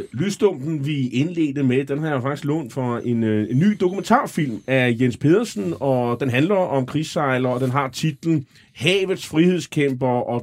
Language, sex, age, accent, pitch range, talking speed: Danish, male, 30-49, native, 115-155 Hz, 165 wpm